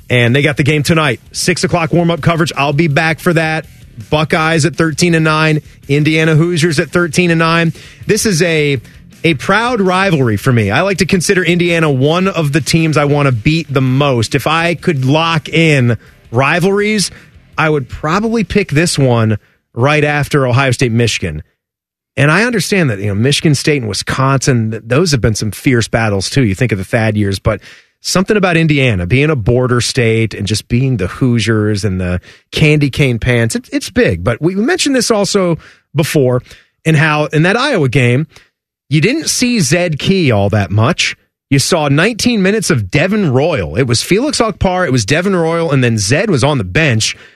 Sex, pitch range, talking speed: male, 125-180 Hz, 195 wpm